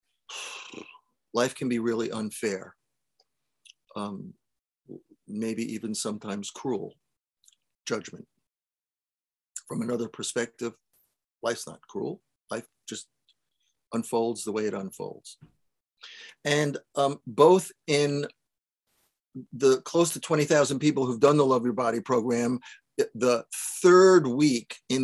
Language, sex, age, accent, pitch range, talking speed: English, male, 50-69, American, 115-150 Hz, 105 wpm